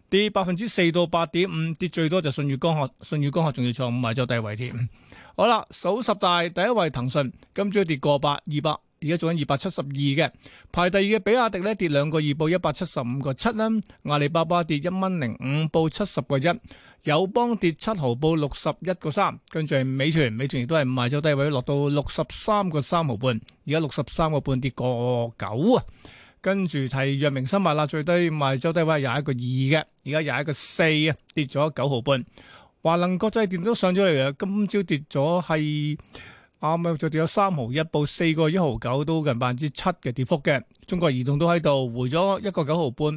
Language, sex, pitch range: Chinese, male, 140-180 Hz